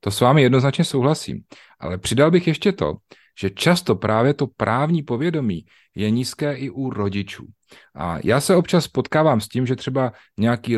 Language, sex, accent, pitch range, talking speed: Czech, male, native, 100-120 Hz, 175 wpm